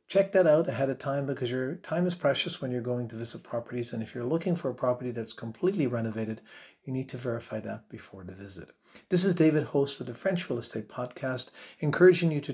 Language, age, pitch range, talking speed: English, 50-69, 120-155 Hz, 230 wpm